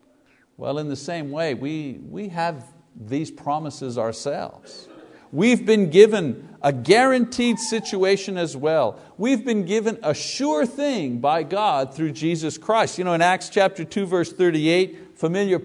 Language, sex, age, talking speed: English, male, 50-69, 150 wpm